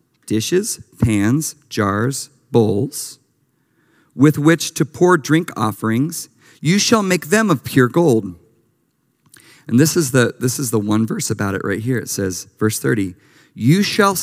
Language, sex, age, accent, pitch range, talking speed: English, male, 40-59, American, 120-170 Hz, 150 wpm